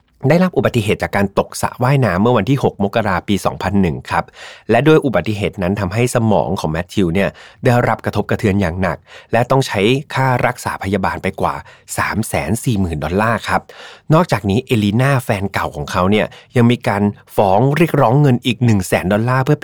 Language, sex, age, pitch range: Thai, male, 30-49, 100-125 Hz